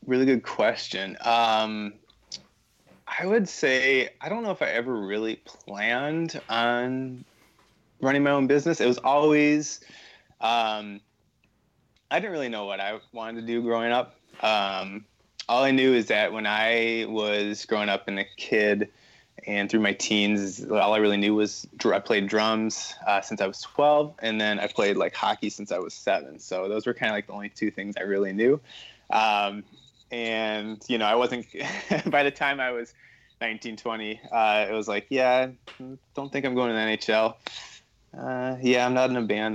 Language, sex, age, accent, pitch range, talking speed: English, male, 20-39, American, 105-125 Hz, 185 wpm